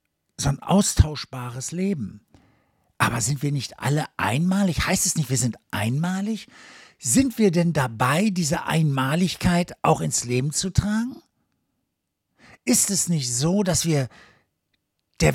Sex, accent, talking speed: male, German, 135 wpm